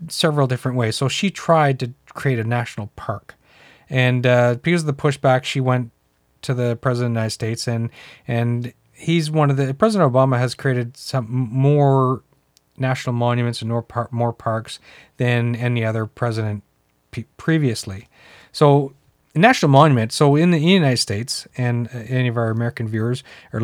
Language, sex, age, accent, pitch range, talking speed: English, male, 40-59, American, 120-145 Hz, 170 wpm